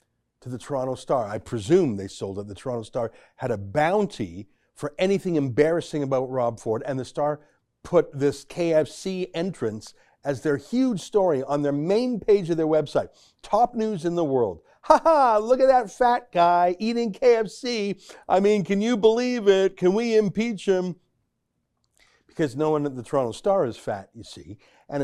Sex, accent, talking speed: male, American, 180 wpm